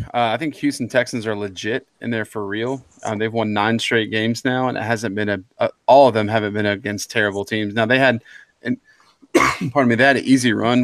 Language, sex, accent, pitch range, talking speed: English, male, American, 105-125 Hz, 240 wpm